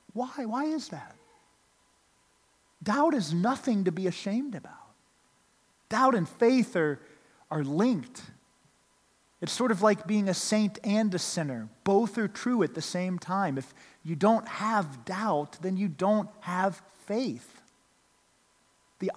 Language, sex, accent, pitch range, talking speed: English, male, American, 175-230 Hz, 140 wpm